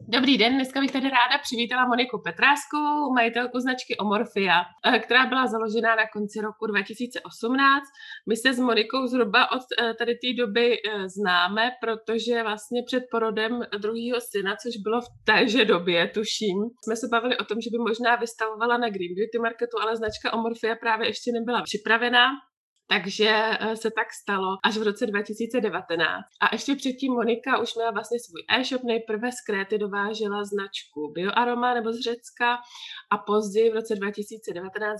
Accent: native